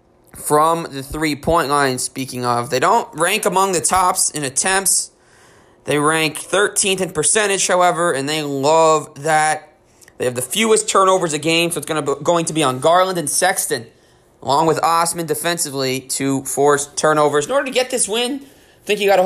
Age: 20-39